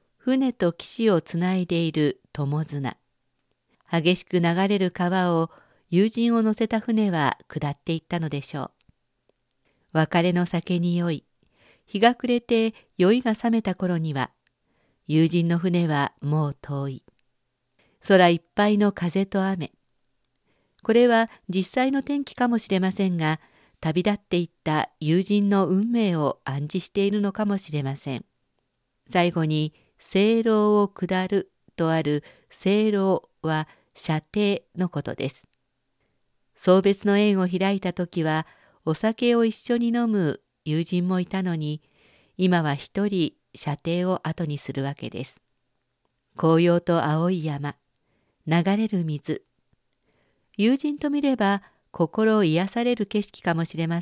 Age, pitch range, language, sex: 50-69, 155-205 Hz, Japanese, female